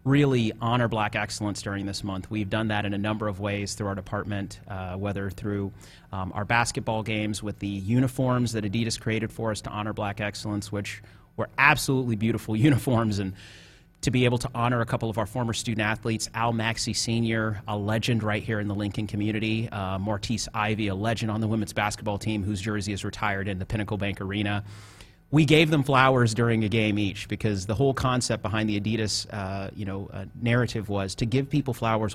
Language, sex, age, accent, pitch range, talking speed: English, male, 30-49, American, 105-120 Hz, 205 wpm